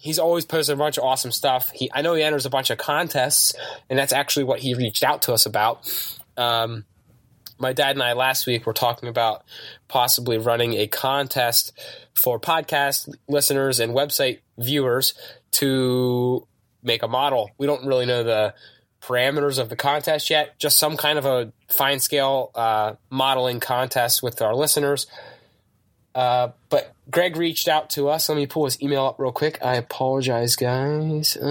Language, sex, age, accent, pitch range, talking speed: English, male, 20-39, American, 120-150 Hz, 175 wpm